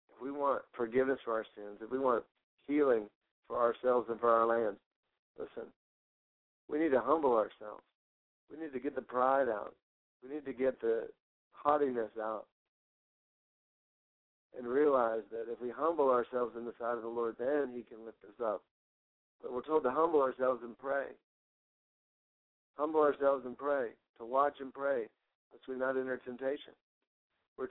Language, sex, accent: English, male, American